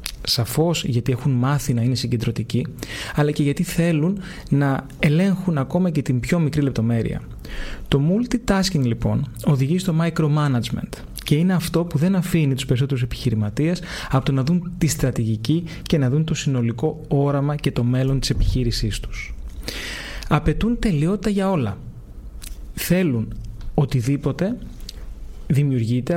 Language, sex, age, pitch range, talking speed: Greek, male, 30-49, 125-165 Hz, 135 wpm